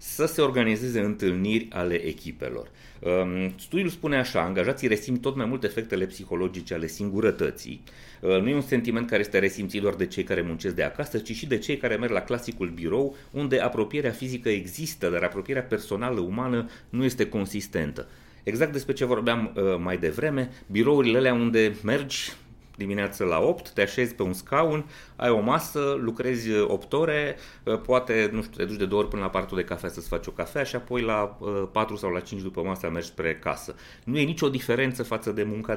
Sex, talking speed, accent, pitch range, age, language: male, 190 wpm, native, 100-130 Hz, 30-49, Romanian